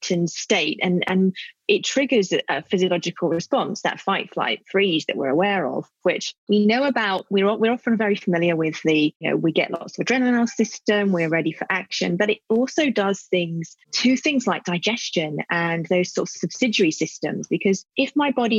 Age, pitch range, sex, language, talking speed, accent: 30-49, 175-215 Hz, female, English, 200 wpm, British